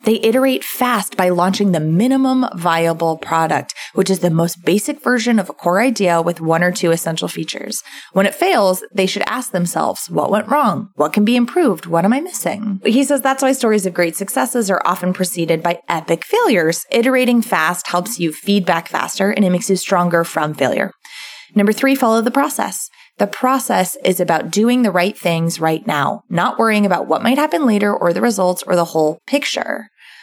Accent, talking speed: American, 195 wpm